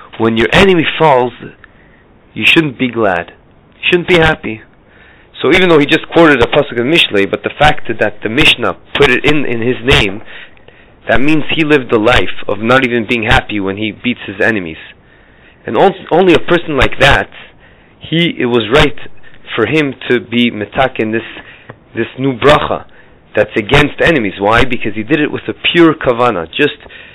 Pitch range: 110-140 Hz